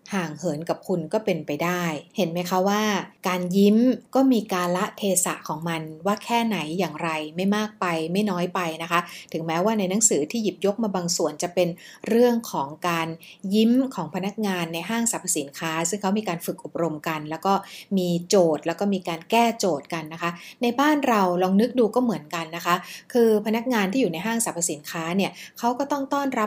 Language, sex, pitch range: Thai, female, 170-220 Hz